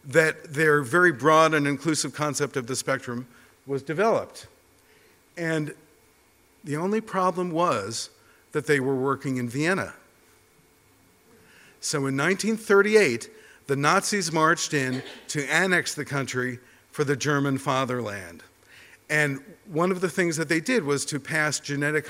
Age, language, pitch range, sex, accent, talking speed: 50-69, English, 130-165 Hz, male, American, 135 wpm